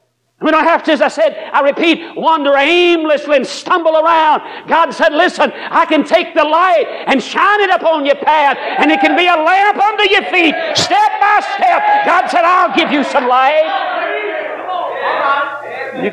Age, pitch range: 60-79, 260-345 Hz